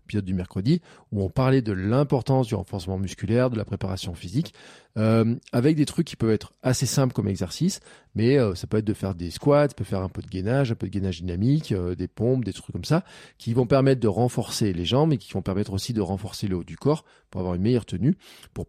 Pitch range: 100-135 Hz